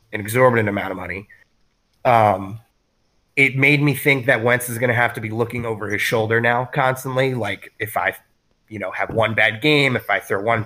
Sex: male